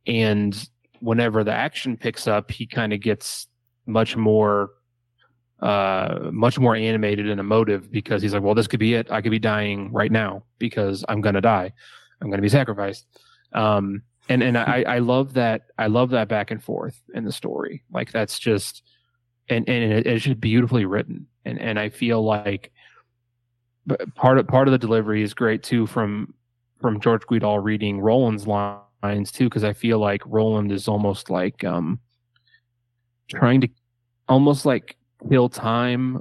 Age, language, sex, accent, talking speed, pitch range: 20-39, English, male, American, 175 wpm, 105-120 Hz